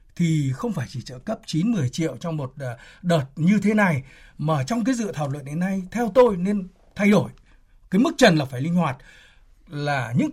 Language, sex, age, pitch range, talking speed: Vietnamese, male, 60-79, 150-215 Hz, 210 wpm